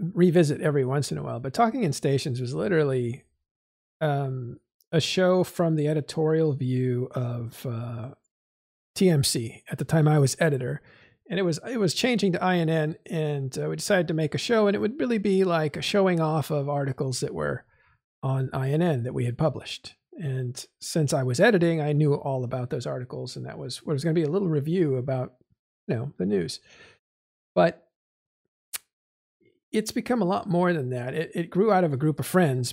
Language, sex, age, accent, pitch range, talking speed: English, male, 50-69, American, 130-170 Hz, 200 wpm